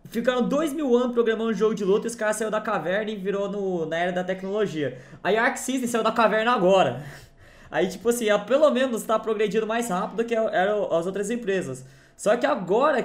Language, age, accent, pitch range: Portuguese, 20-39, Brazilian, 165-225 Hz